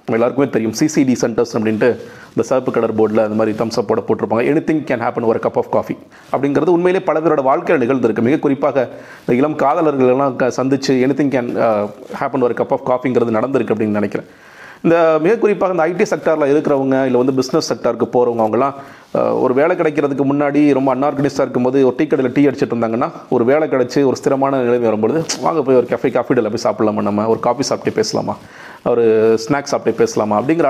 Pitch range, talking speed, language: 120-160 Hz, 180 wpm, Tamil